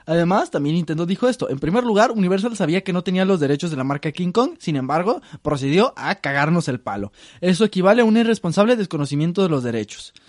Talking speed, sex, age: 210 wpm, male, 20-39